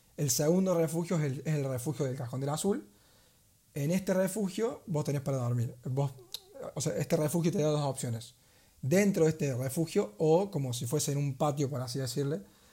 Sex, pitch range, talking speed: male, 130-160 Hz, 200 wpm